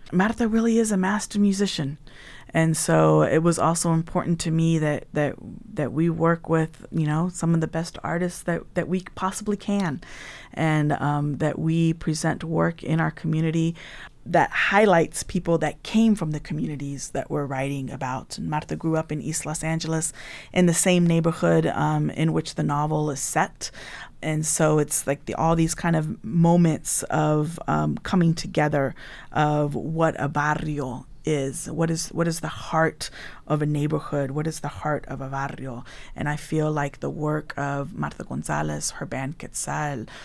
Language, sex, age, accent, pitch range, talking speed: English, female, 30-49, American, 150-180 Hz, 175 wpm